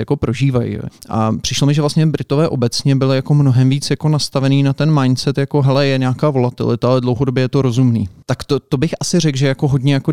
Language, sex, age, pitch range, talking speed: Slovak, male, 30-49, 120-135 Hz, 225 wpm